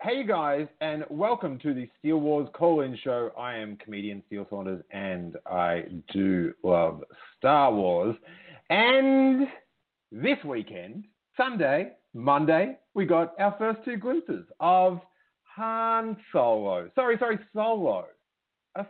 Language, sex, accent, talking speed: English, male, Australian, 125 wpm